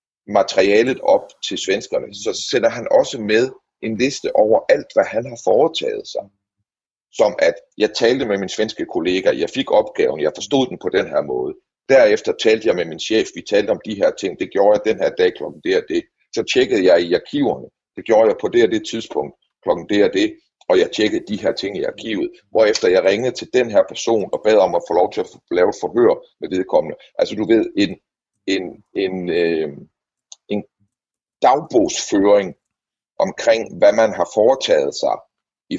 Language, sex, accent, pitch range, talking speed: Danish, male, native, 280-455 Hz, 195 wpm